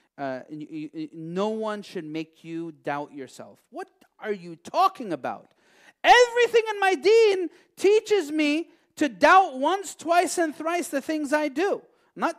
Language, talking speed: English, 160 wpm